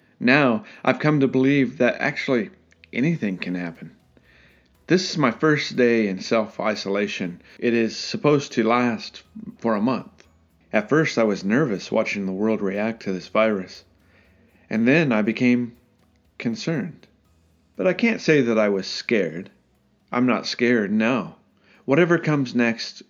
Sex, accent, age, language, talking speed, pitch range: male, American, 40-59, English, 150 wpm, 110-155 Hz